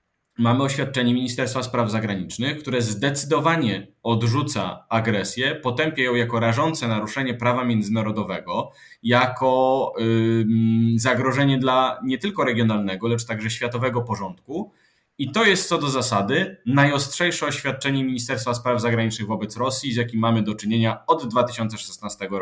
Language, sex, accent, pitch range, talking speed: Polish, male, native, 110-135 Hz, 125 wpm